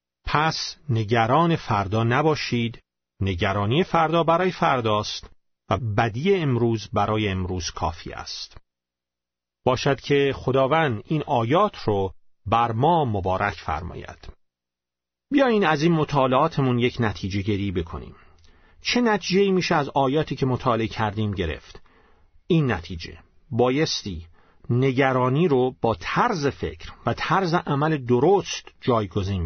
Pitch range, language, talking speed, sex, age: 95-165 Hz, Persian, 110 wpm, male, 40-59